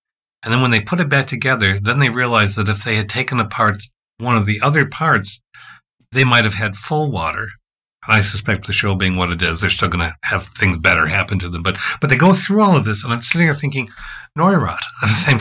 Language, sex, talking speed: English, male, 240 wpm